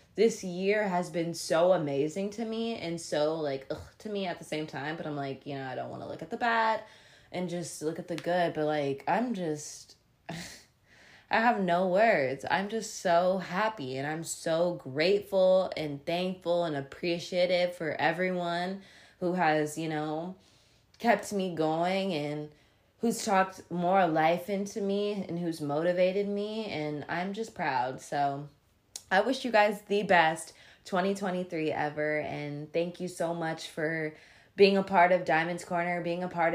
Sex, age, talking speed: female, 20-39, 170 wpm